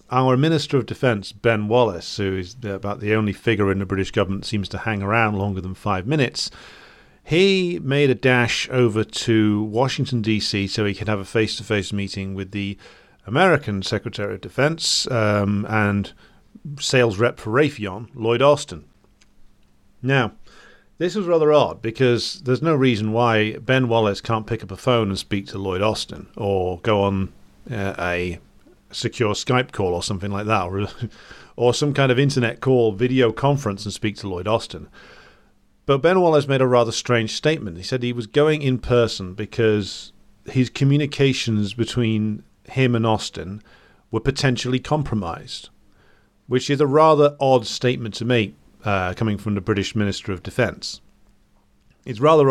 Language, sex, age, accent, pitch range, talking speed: English, male, 40-59, British, 100-130 Hz, 165 wpm